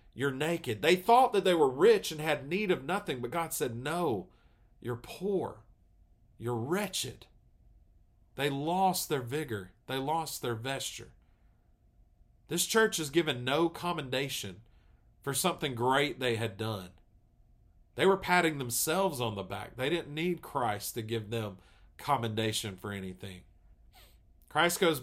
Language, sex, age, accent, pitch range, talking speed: English, male, 40-59, American, 115-175 Hz, 145 wpm